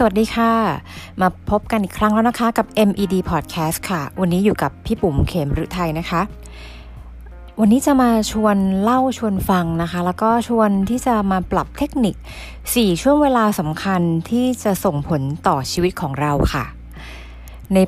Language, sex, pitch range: Thai, female, 160-210 Hz